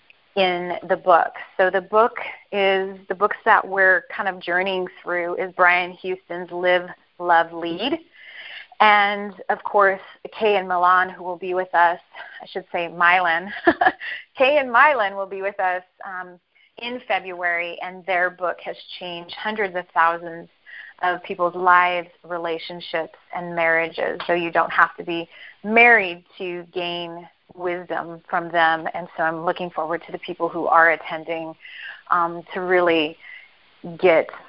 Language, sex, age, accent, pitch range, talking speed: English, female, 30-49, American, 170-195 Hz, 150 wpm